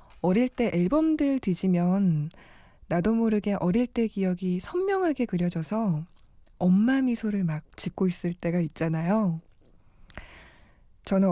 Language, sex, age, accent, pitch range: Korean, female, 20-39, native, 175-225 Hz